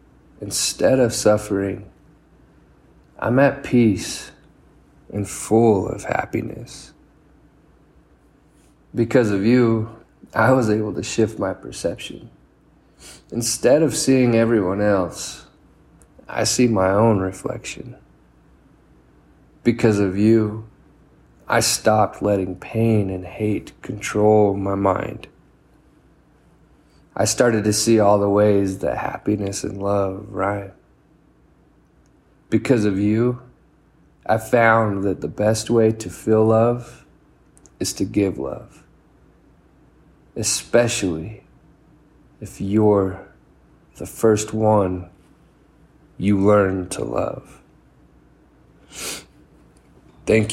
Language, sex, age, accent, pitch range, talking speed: English, male, 40-59, American, 100-115 Hz, 95 wpm